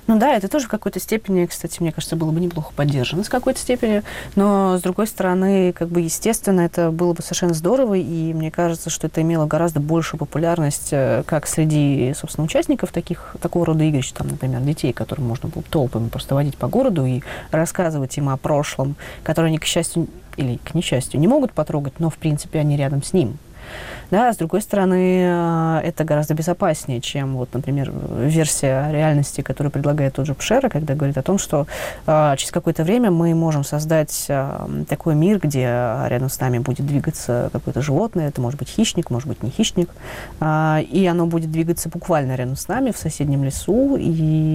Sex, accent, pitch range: female, native, 140-175 Hz